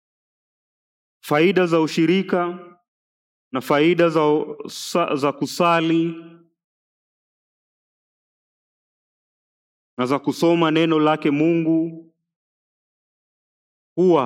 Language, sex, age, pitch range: English, male, 40-59, 120-160 Hz